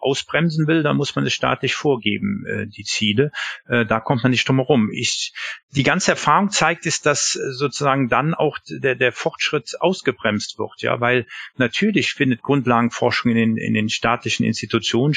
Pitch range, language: 115-155 Hz, German